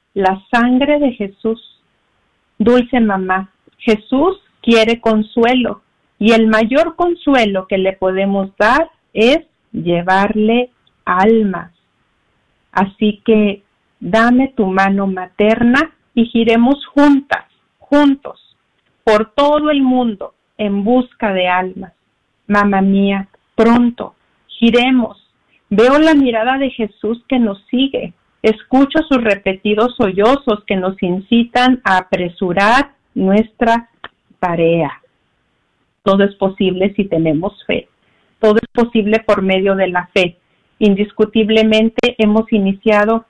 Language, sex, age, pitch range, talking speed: Spanish, female, 50-69, 195-235 Hz, 110 wpm